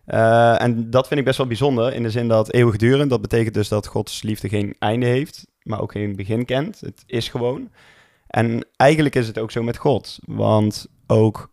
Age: 20-39